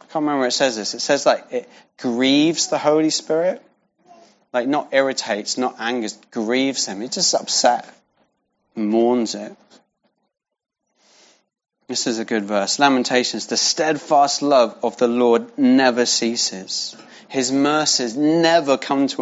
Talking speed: 145 wpm